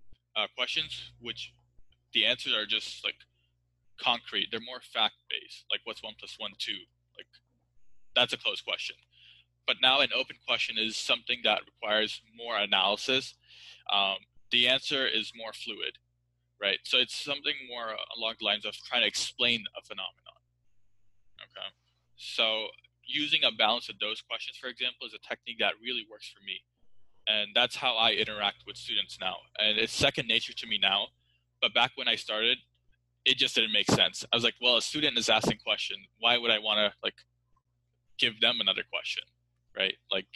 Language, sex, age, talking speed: Telugu, male, 20-39, 175 wpm